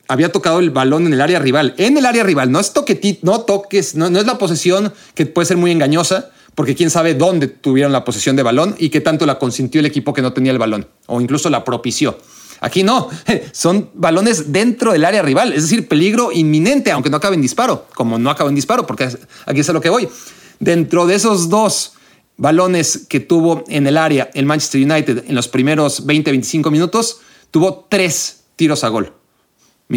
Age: 30-49